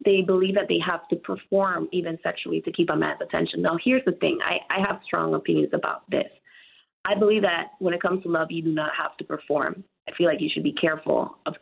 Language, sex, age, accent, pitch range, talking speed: English, female, 20-39, American, 170-210 Hz, 245 wpm